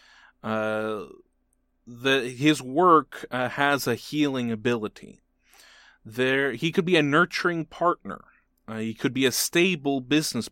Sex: male